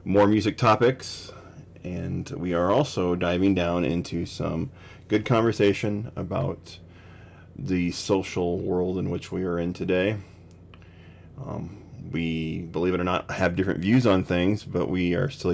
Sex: male